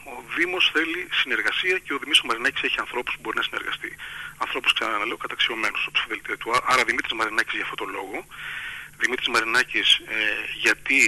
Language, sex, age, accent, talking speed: Greek, male, 30-49, native, 160 wpm